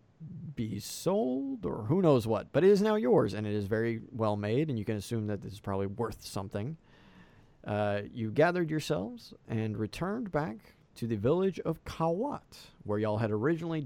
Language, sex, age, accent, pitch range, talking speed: English, male, 40-59, American, 105-155 Hz, 185 wpm